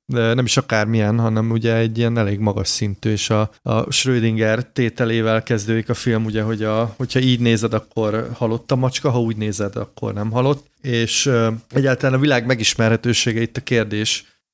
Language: Hungarian